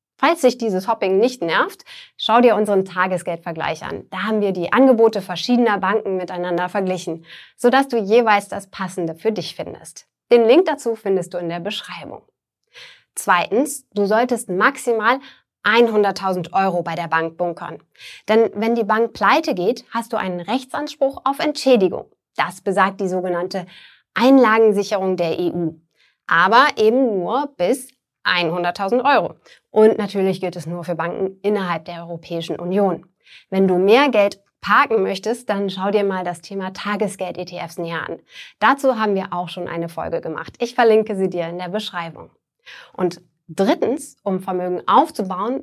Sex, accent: female, German